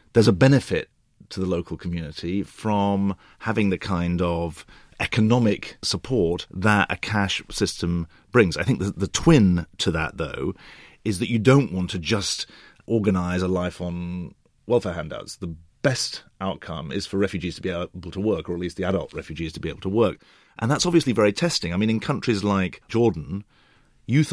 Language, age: English, 40-59